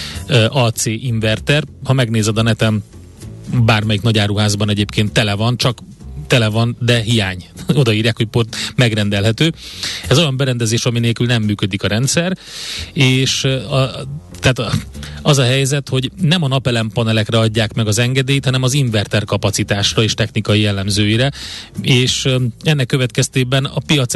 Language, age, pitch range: Hungarian, 30-49, 110-135 Hz